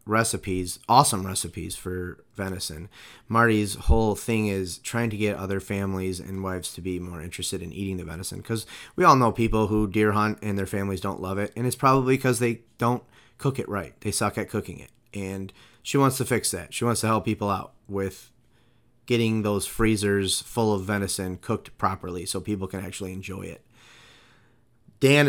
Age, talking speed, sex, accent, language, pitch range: 30-49, 190 wpm, male, American, English, 95-115 Hz